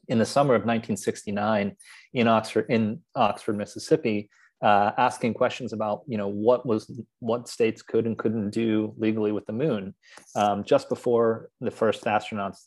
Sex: male